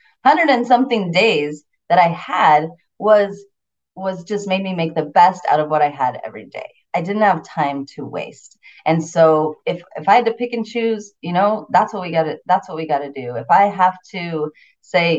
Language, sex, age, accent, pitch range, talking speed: English, female, 30-49, American, 155-210 Hz, 215 wpm